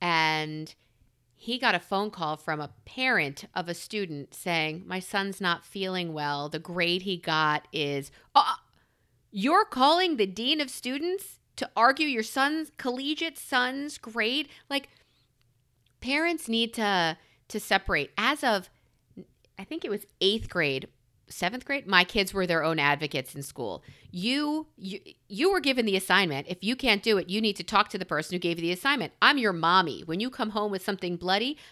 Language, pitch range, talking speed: English, 170-250 Hz, 180 wpm